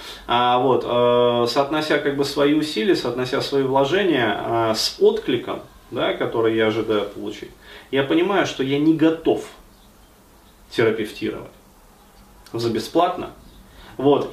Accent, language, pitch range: native, Russian, 115-150 Hz